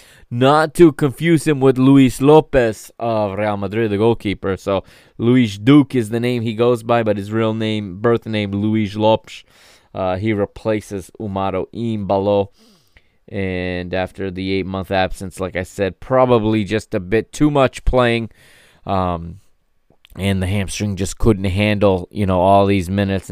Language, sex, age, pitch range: English, male, 20-39, 95-120 Hz